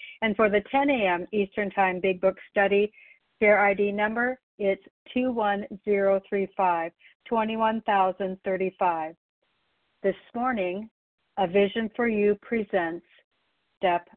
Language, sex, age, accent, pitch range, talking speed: English, female, 60-79, American, 190-220 Hz, 95 wpm